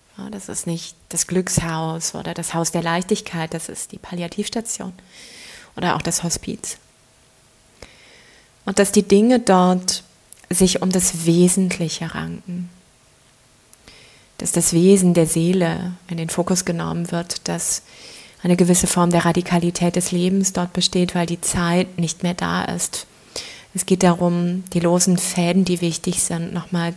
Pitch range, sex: 170-185 Hz, female